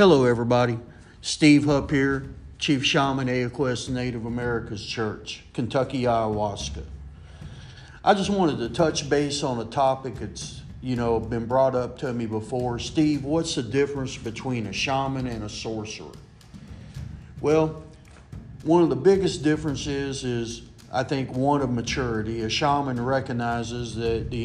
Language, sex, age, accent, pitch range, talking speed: English, male, 50-69, American, 115-140 Hz, 140 wpm